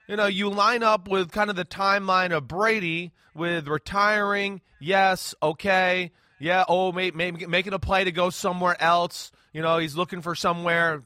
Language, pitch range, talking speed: English, 155-190 Hz, 175 wpm